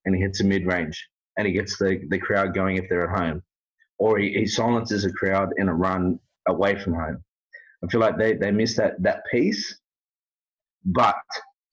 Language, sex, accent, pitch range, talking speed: English, male, Australian, 100-120 Hz, 195 wpm